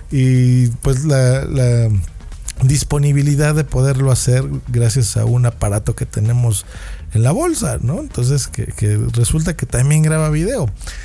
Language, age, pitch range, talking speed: Spanish, 50-69, 120-145 Hz, 140 wpm